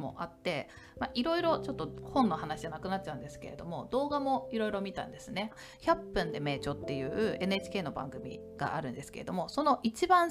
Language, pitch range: Japanese, 145-245 Hz